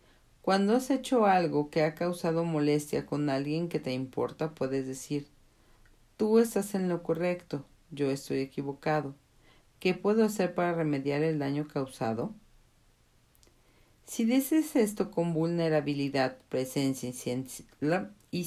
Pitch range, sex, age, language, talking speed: 145-190 Hz, female, 40-59, Spanish, 125 wpm